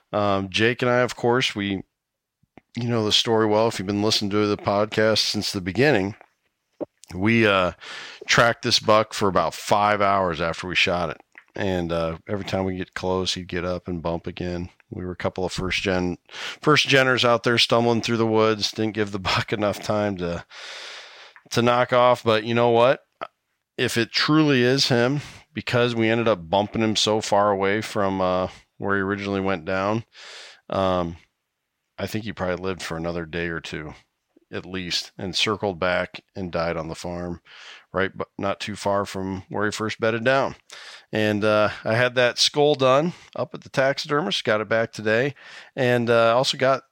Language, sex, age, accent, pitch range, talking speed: English, male, 40-59, American, 95-115 Hz, 190 wpm